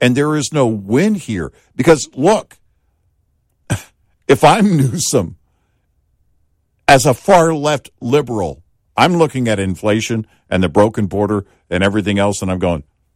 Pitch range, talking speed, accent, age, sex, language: 90-125 Hz, 135 wpm, American, 50-69, male, English